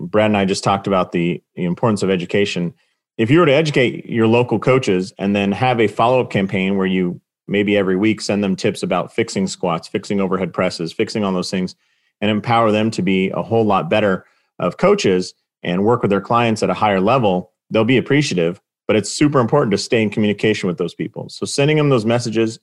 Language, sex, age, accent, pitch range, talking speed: English, male, 30-49, American, 100-120 Hz, 215 wpm